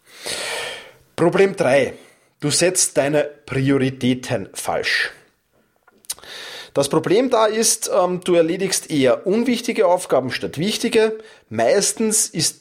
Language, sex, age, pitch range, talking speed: German, male, 30-49, 150-225 Hz, 95 wpm